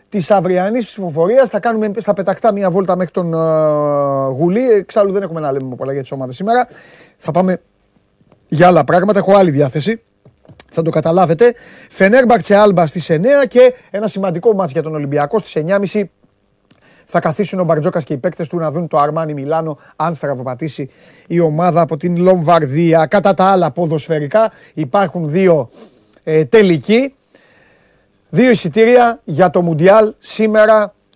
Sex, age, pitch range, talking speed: male, 30-49, 160-215 Hz, 150 wpm